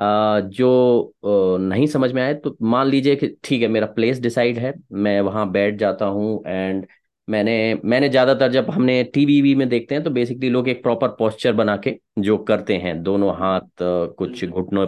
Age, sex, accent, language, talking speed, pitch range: 30-49, male, native, Hindi, 190 wpm, 110-150 Hz